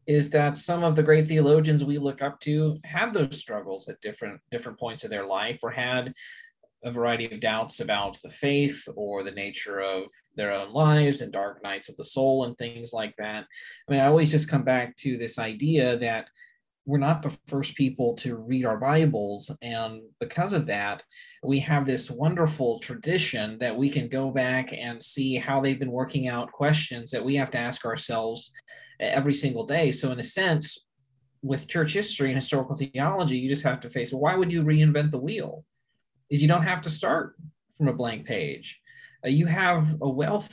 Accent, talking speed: American, 200 wpm